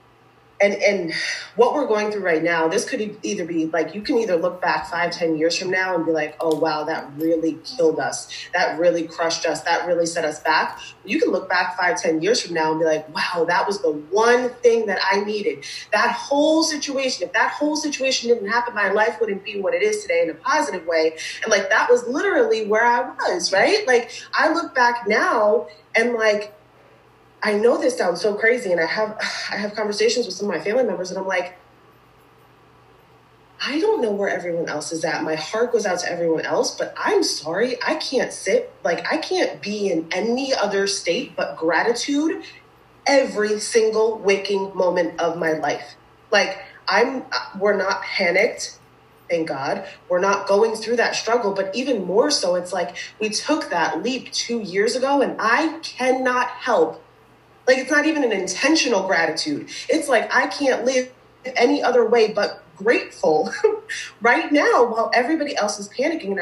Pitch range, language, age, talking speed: 175-260 Hz, English, 30-49, 190 wpm